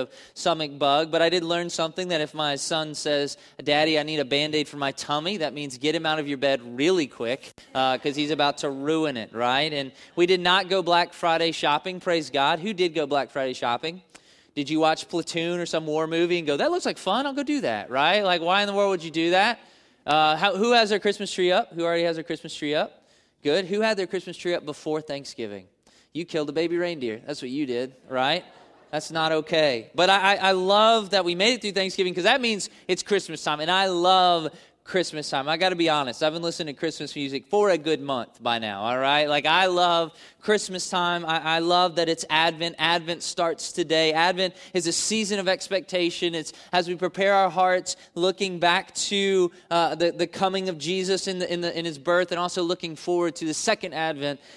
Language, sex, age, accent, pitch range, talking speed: English, male, 20-39, American, 155-185 Hz, 230 wpm